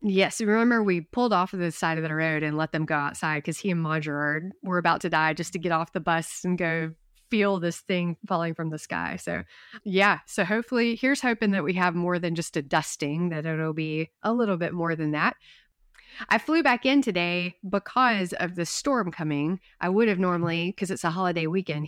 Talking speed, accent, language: 225 wpm, American, English